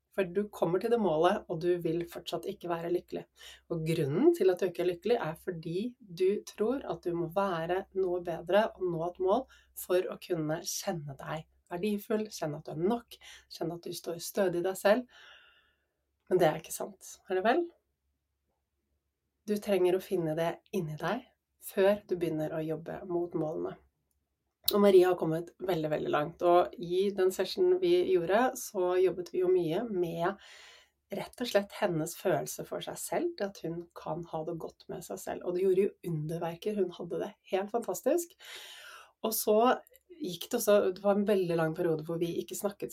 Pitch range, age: 170-205 Hz, 30-49